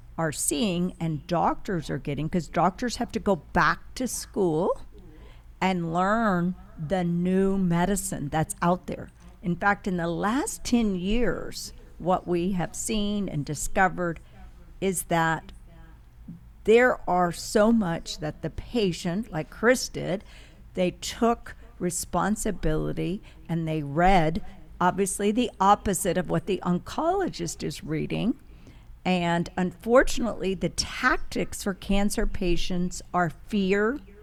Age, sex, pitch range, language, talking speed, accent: 50-69, female, 165-200 Hz, English, 125 wpm, American